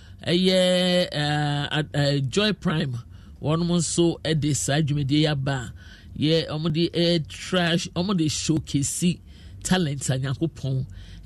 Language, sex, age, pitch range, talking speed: English, male, 50-69, 95-155 Hz, 135 wpm